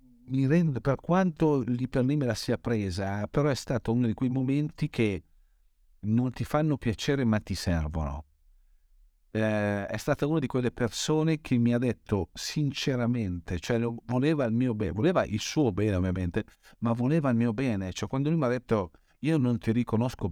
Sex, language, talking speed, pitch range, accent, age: male, Italian, 185 wpm, 85-125 Hz, native, 50-69